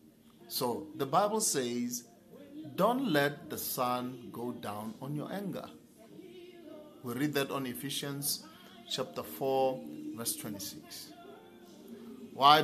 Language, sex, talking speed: English, male, 110 wpm